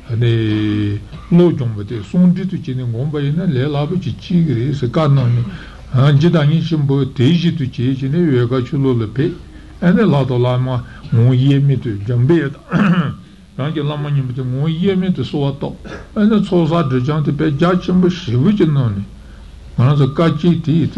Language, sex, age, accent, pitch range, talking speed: Italian, male, 60-79, Turkish, 125-165 Hz, 70 wpm